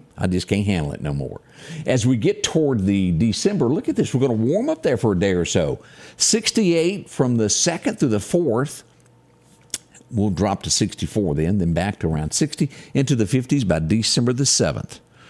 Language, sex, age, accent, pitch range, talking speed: English, male, 50-69, American, 95-140 Hz, 200 wpm